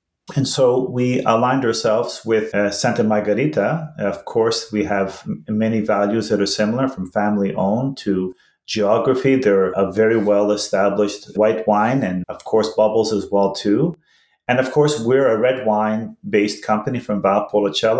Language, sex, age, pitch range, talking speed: English, male, 30-49, 105-130 Hz, 150 wpm